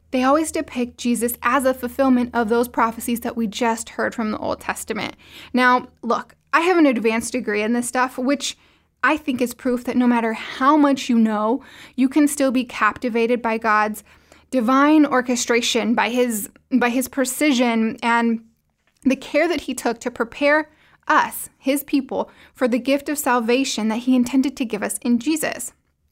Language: English